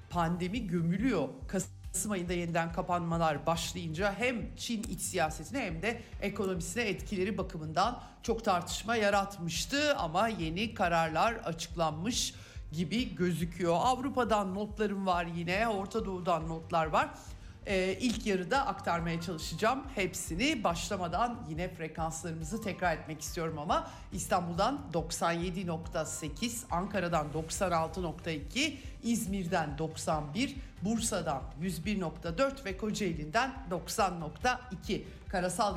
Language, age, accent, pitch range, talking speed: Turkish, 60-79, native, 160-205 Hz, 95 wpm